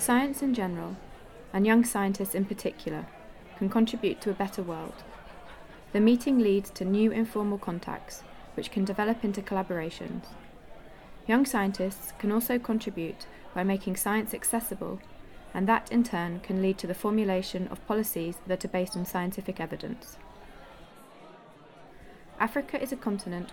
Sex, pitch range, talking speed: female, 185-220 Hz, 145 wpm